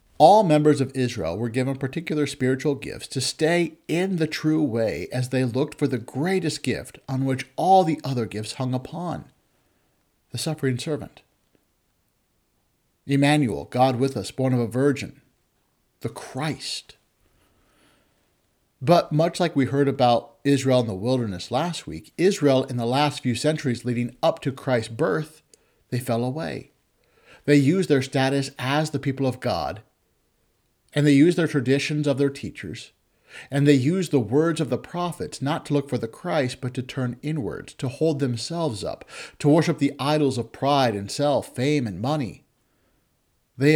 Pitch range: 125-150 Hz